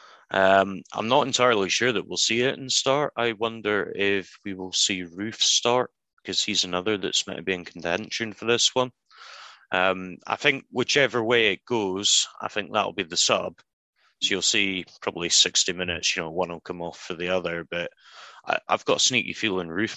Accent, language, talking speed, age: British, English, 200 wpm, 30-49